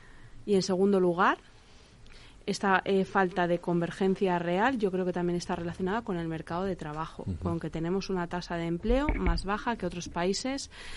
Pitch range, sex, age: 165-200 Hz, female, 20-39